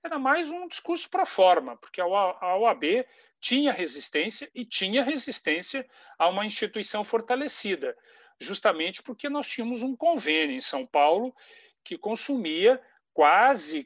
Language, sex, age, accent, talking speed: Portuguese, male, 40-59, Brazilian, 135 wpm